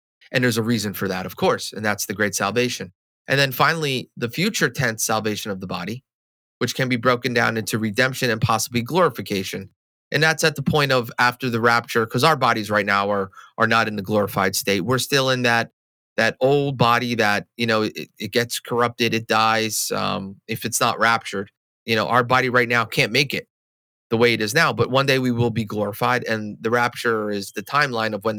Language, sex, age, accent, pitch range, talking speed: English, male, 30-49, American, 110-135 Hz, 220 wpm